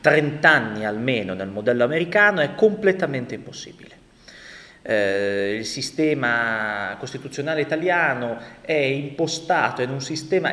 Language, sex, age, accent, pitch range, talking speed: Italian, male, 30-49, native, 125-190 Hz, 105 wpm